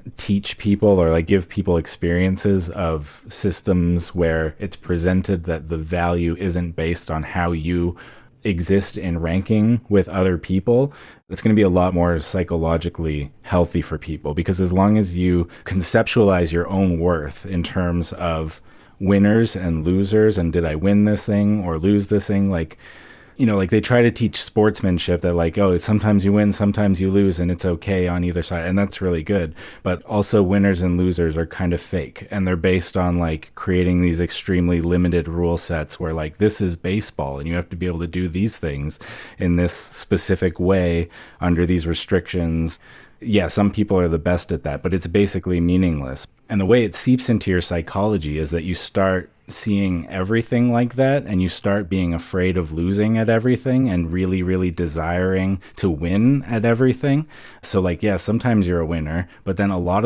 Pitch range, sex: 85-100 Hz, male